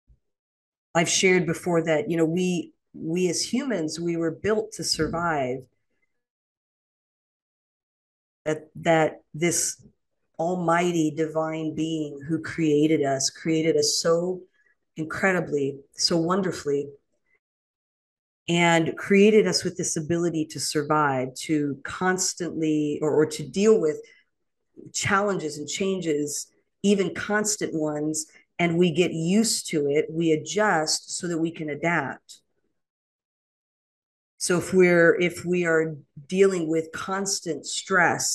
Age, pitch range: 40-59, 150-175 Hz